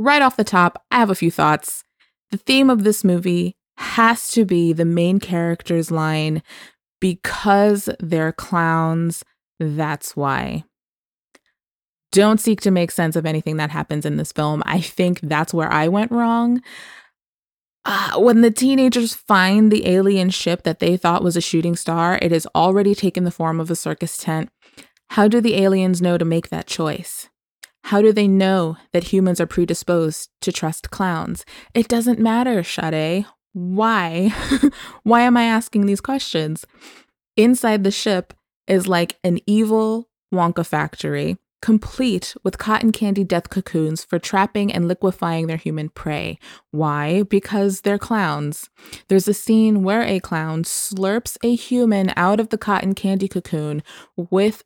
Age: 20-39